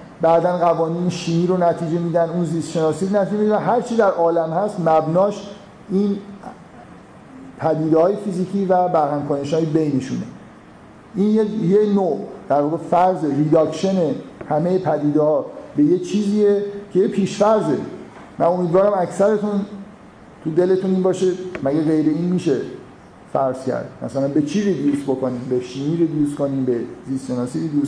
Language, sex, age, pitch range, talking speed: Persian, male, 50-69, 150-195 Hz, 140 wpm